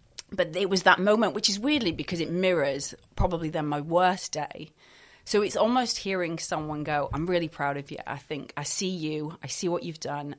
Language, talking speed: English, 215 wpm